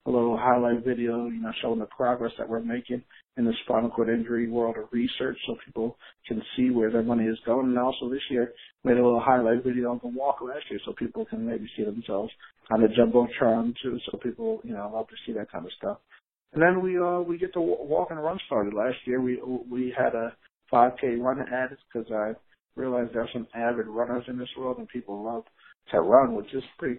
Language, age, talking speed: English, 60-79, 235 wpm